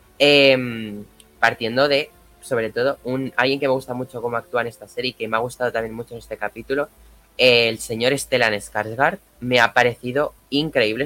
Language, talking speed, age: Spanish, 185 wpm, 20-39